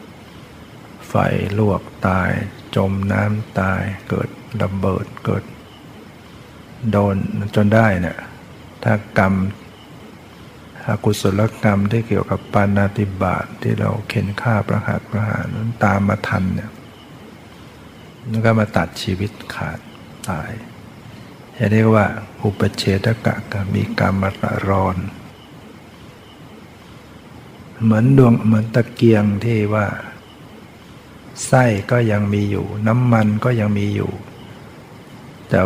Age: 60-79